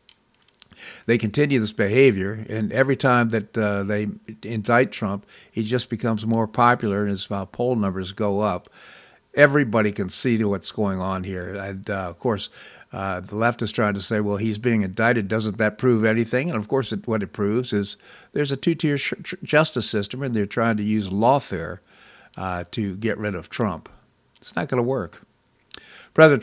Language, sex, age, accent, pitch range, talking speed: English, male, 50-69, American, 100-130 Hz, 190 wpm